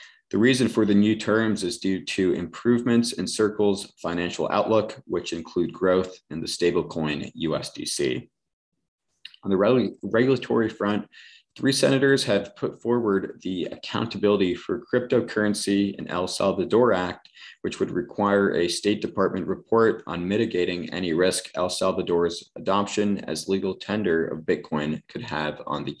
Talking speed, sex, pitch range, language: 140 wpm, male, 90-115 Hz, English